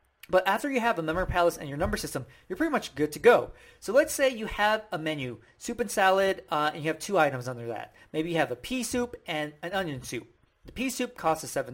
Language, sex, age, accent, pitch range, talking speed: English, male, 40-59, American, 160-240 Hz, 250 wpm